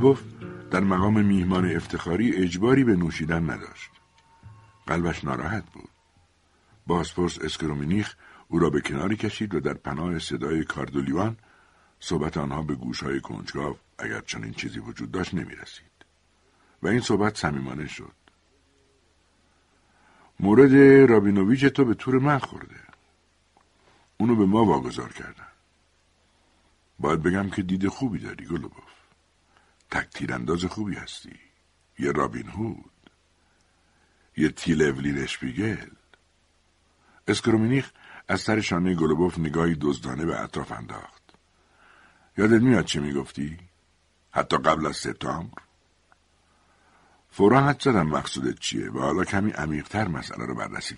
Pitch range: 75-100 Hz